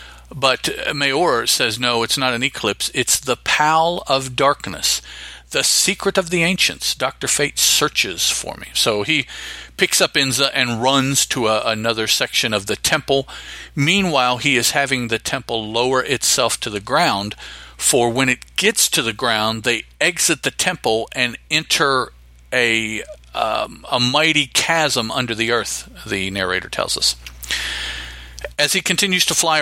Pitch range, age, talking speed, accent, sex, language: 110-140 Hz, 50-69, 160 wpm, American, male, English